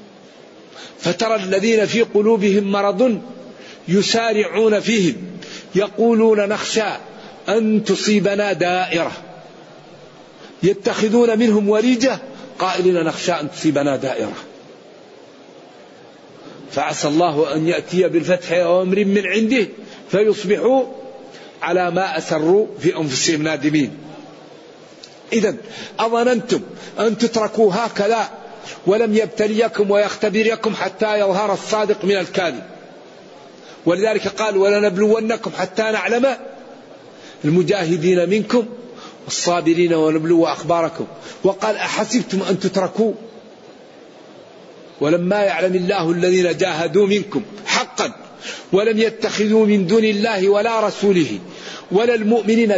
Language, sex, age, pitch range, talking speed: Arabic, male, 50-69, 185-225 Hz, 90 wpm